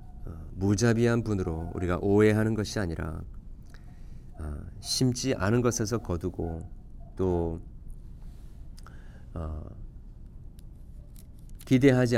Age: 40-59